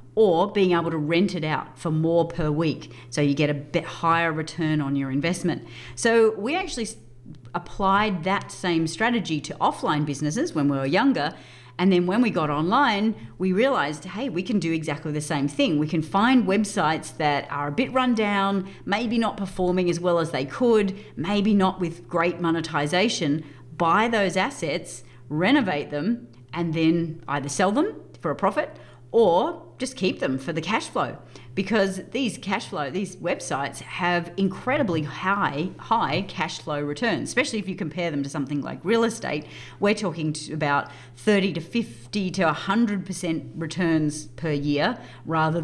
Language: English